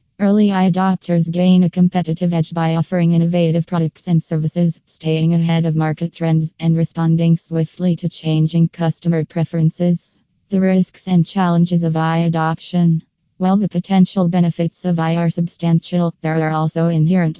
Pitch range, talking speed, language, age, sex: 165-180 Hz, 150 wpm, English, 20-39, female